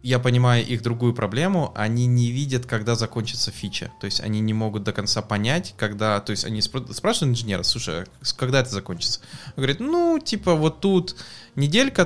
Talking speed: 185 wpm